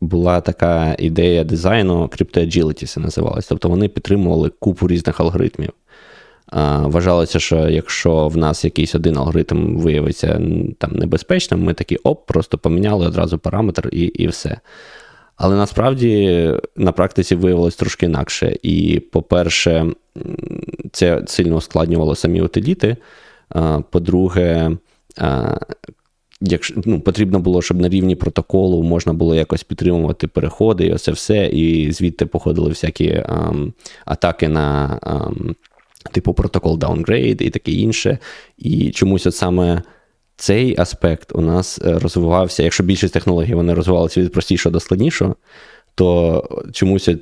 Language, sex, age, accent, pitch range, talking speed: Ukrainian, male, 20-39, native, 80-95 Hz, 125 wpm